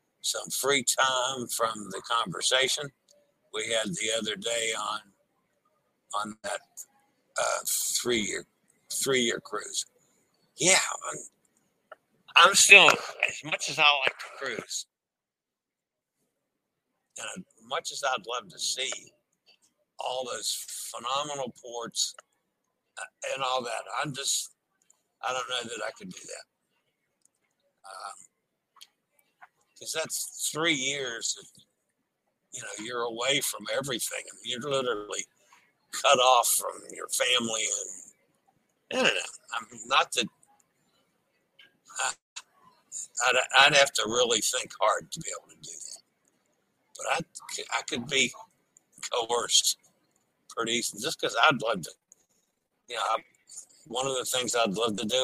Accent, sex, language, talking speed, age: American, male, English, 125 wpm, 60-79